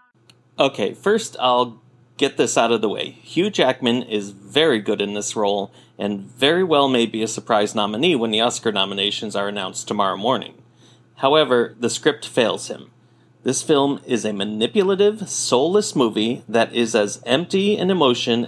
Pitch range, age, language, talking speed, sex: 115-145 Hz, 40-59, English, 165 wpm, male